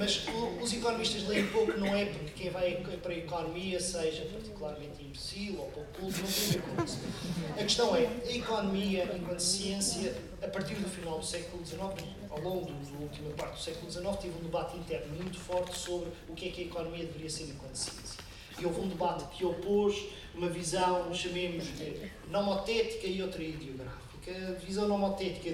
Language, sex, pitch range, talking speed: Portuguese, male, 160-185 Hz, 185 wpm